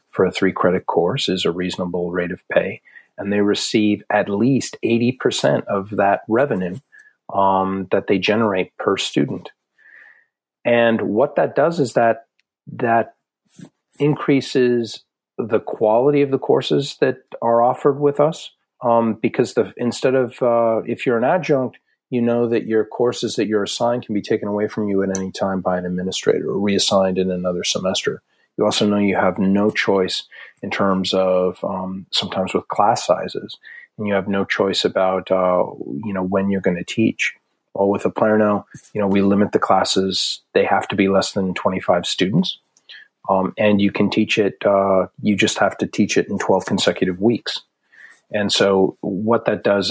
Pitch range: 95-115 Hz